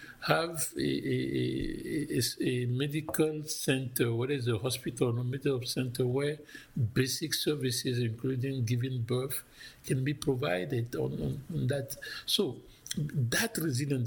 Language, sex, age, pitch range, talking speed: English, male, 60-79, 110-135 Hz, 130 wpm